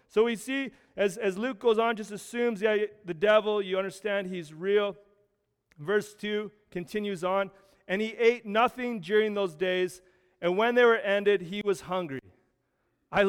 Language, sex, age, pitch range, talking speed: English, male, 30-49, 190-230 Hz, 165 wpm